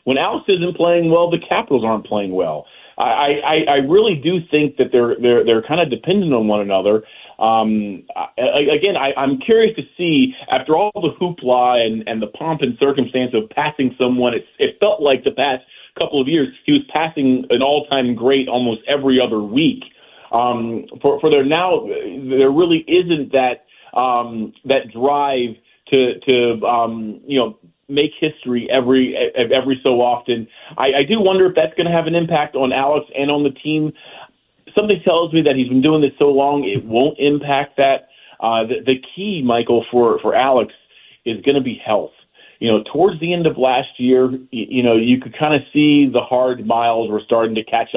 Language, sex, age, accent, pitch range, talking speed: English, male, 30-49, American, 115-150 Hz, 200 wpm